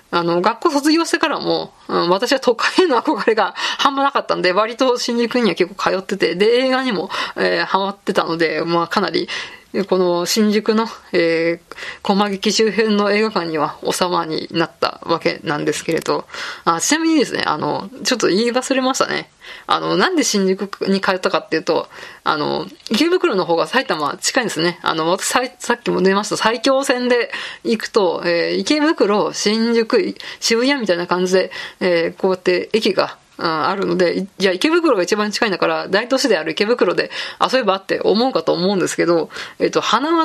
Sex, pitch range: female, 185-270 Hz